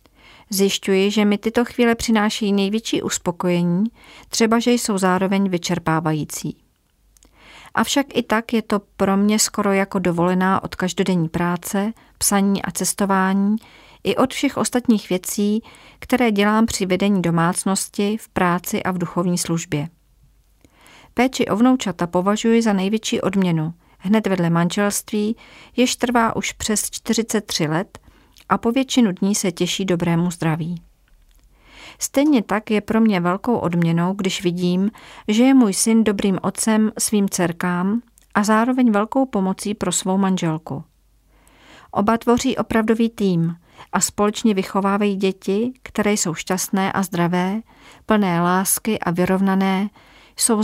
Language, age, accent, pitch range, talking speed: Czech, 40-59, native, 180-220 Hz, 130 wpm